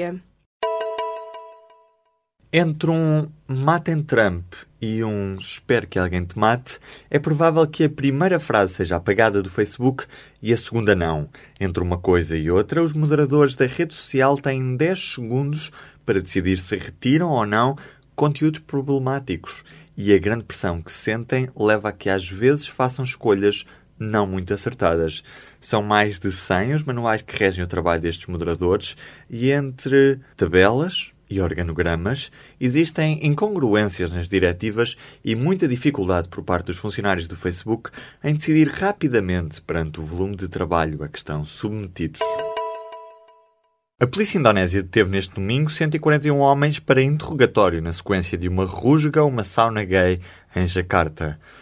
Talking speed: 145 wpm